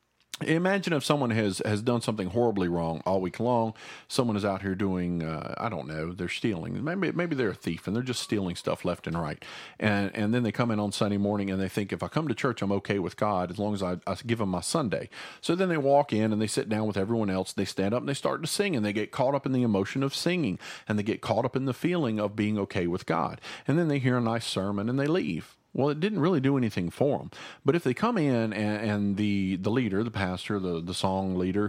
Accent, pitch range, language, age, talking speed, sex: American, 95-125 Hz, English, 40-59, 270 wpm, male